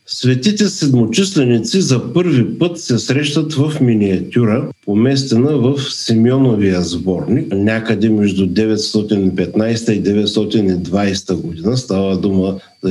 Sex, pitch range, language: male, 105-140 Hz, Bulgarian